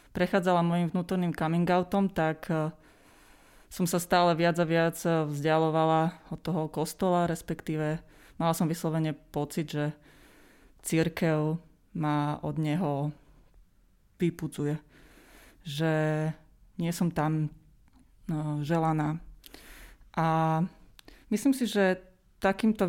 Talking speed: 95 wpm